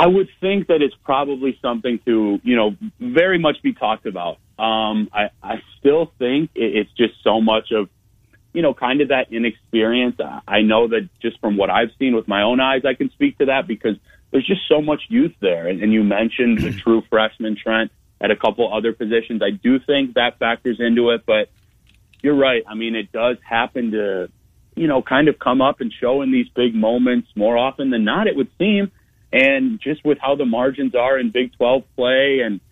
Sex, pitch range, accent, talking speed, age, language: male, 110-140 Hz, American, 215 wpm, 30-49, English